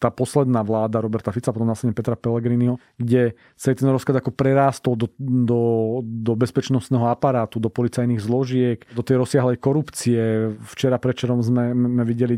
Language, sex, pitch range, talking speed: Slovak, male, 120-135 Hz, 165 wpm